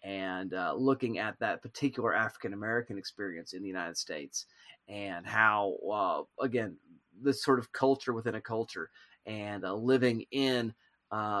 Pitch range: 105-130 Hz